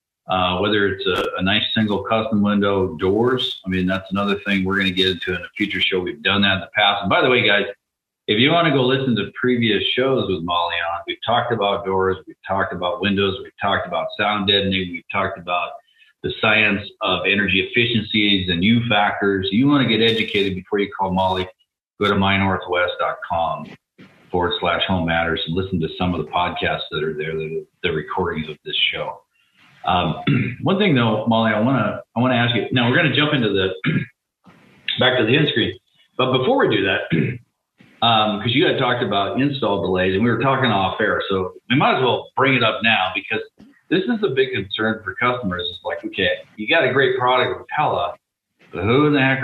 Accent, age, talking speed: American, 40-59, 215 wpm